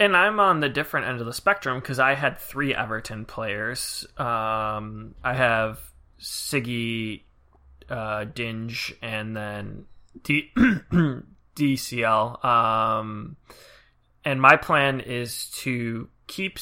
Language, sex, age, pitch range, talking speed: English, male, 20-39, 110-130 Hz, 110 wpm